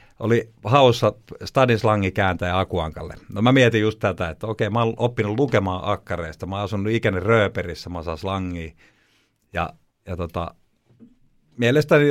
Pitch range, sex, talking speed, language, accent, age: 90-115 Hz, male, 155 wpm, Finnish, native, 50-69